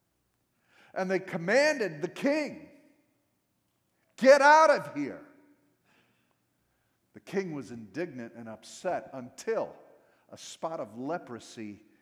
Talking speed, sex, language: 100 wpm, male, English